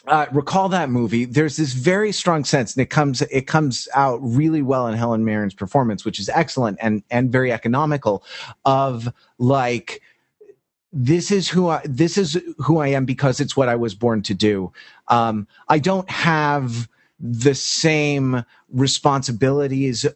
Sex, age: male, 30-49